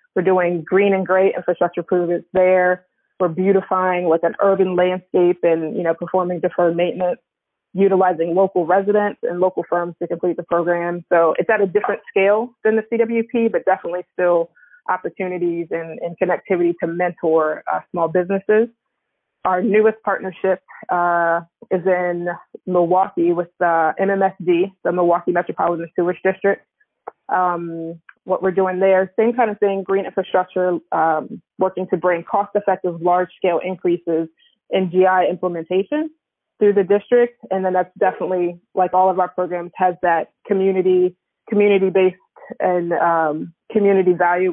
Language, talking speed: English, 145 wpm